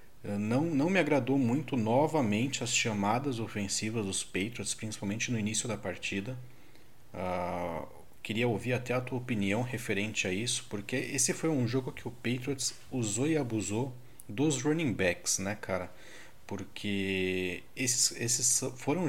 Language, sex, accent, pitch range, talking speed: Portuguese, male, Brazilian, 105-130 Hz, 140 wpm